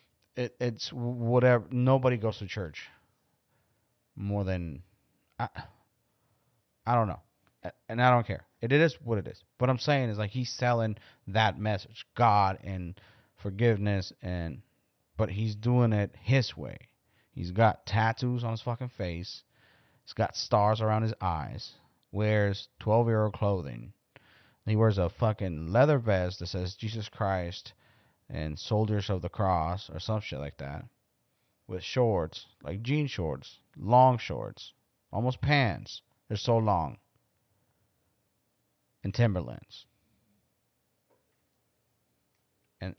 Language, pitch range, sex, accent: English, 95-120 Hz, male, American